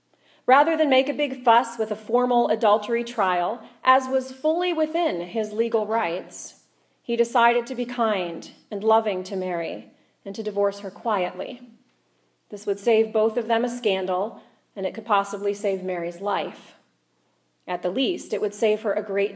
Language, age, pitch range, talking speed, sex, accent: English, 40-59, 185-235 Hz, 175 wpm, female, American